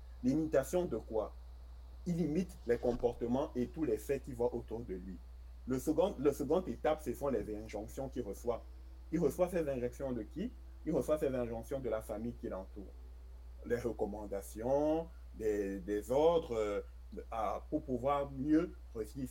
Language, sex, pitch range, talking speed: French, male, 95-140 Hz, 160 wpm